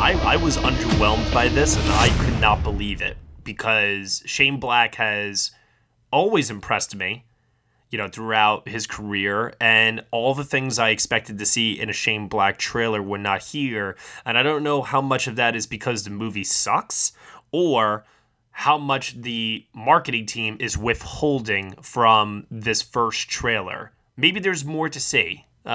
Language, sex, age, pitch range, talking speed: English, male, 20-39, 105-130 Hz, 165 wpm